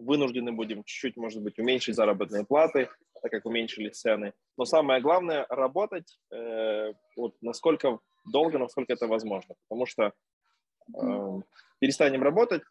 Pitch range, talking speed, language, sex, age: 120-150 Hz, 135 wpm, English, male, 20-39